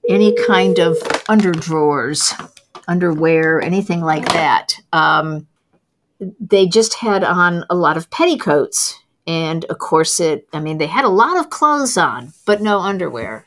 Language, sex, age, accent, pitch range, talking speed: English, female, 50-69, American, 165-215 Hz, 145 wpm